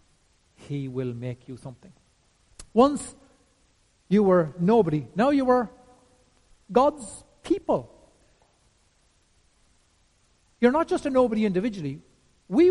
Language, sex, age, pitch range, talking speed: English, male, 60-79, 160-240 Hz, 100 wpm